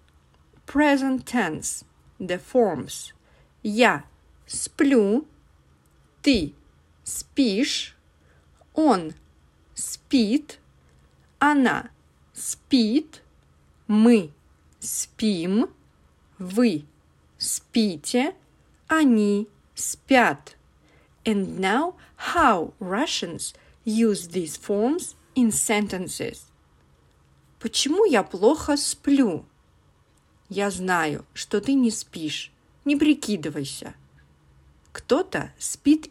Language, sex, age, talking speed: English, female, 40-59, 70 wpm